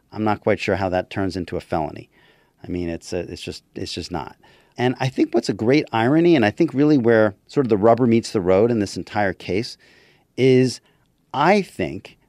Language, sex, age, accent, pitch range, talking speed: English, male, 40-59, American, 100-145 Hz, 220 wpm